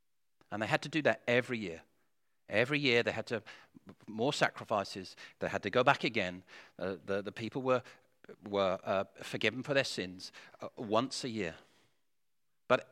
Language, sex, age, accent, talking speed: English, male, 50-69, British, 170 wpm